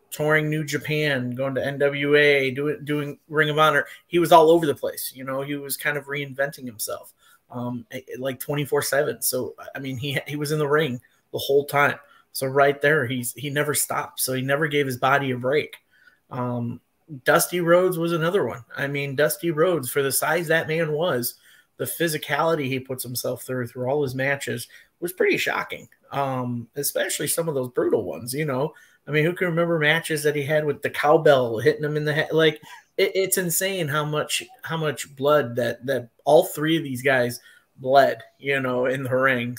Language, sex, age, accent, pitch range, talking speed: English, male, 30-49, American, 130-155 Hz, 205 wpm